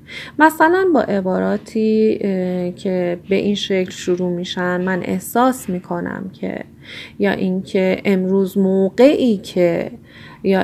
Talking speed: 100 wpm